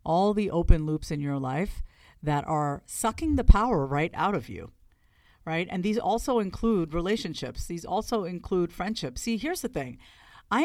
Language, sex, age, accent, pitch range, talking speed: English, female, 50-69, American, 150-195 Hz, 175 wpm